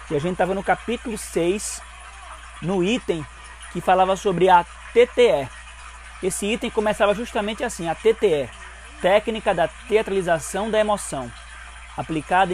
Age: 20-39